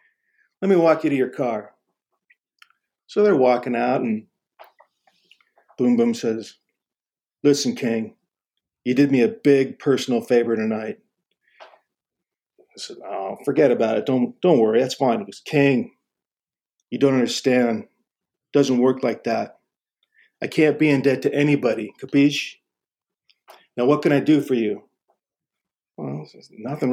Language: English